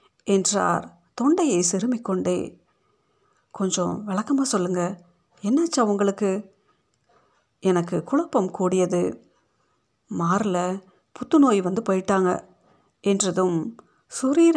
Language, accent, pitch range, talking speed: Tamil, native, 175-220 Hz, 75 wpm